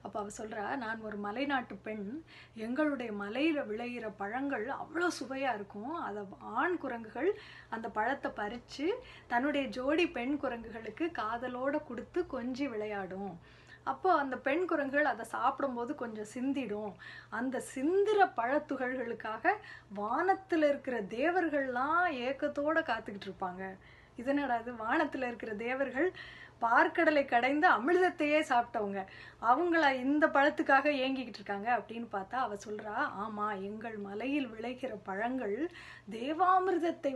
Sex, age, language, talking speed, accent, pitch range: female, 20-39, Tamil, 110 wpm, native, 225-300 Hz